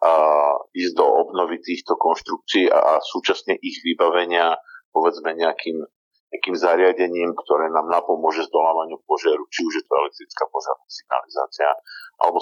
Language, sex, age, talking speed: Slovak, male, 50-69, 130 wpm